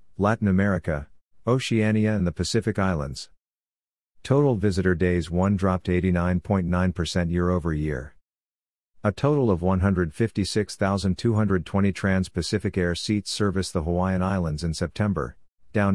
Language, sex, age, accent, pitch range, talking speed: English, male, 50-69, American, 90-105 Hz, 105 wpm